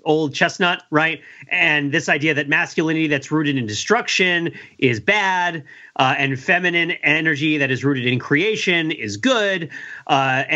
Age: 40-59